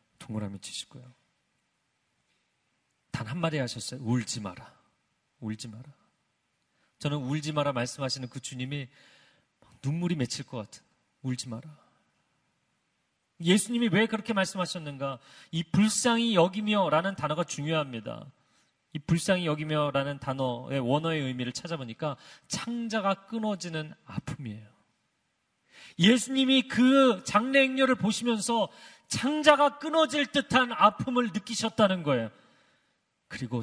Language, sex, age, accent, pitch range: Korean, male, 40-59, native, 130-195 Hz